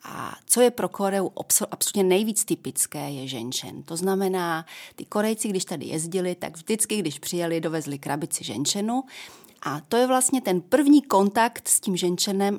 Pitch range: 170-215 Hz